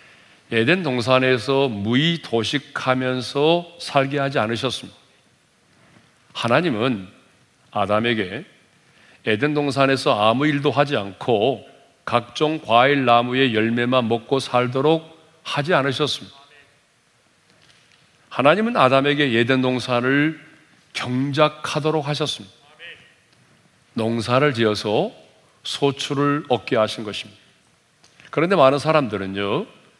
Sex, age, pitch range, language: male, 40-59, 115-150 Hz, Korean